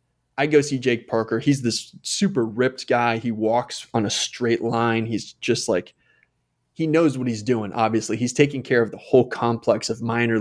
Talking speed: 195 wpm